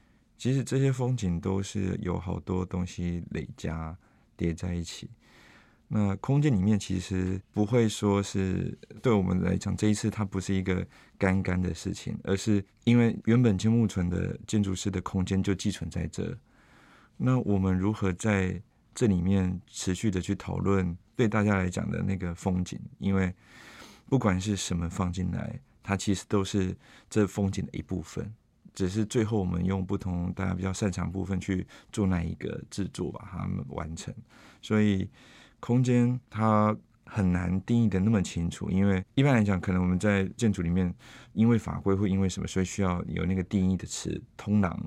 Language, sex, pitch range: Chinese, male, 90-105 Hz